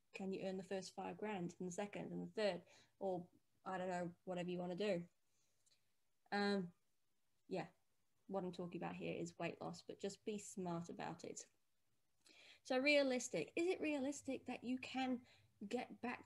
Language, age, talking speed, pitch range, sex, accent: English, 20-39, 175 wpm, 175-220 Hz, female, British